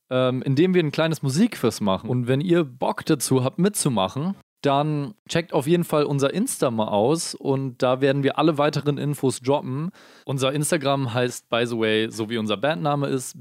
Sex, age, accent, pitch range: male, 20-39, German, 115-155 Hz